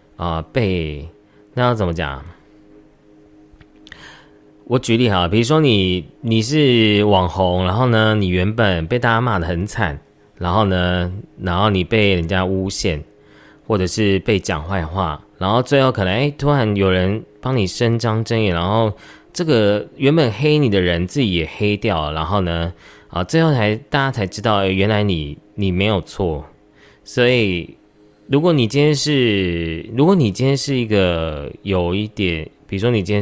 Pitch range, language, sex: 90-120 Hz, Chinese, male